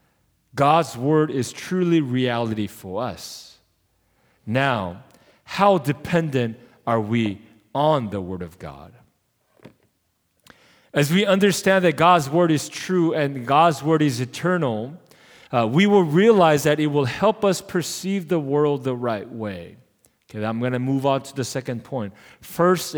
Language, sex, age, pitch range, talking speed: English, male, 40-59, 130-180 Hz, 145 wpm